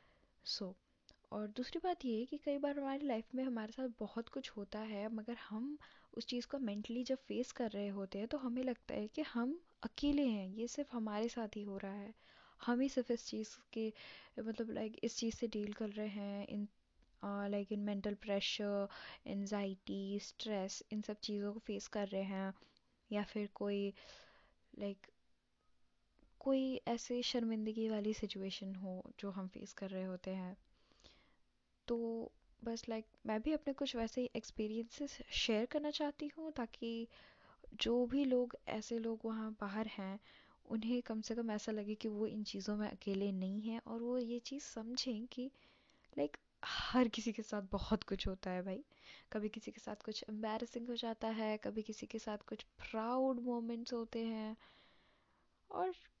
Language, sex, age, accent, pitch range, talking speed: Hindi, female, 10-29, native, 210-245 Hz, 175 wpm